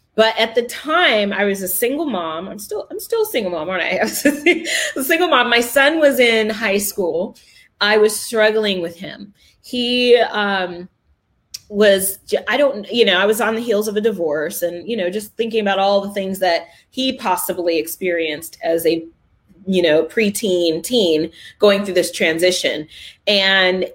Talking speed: 185 wpm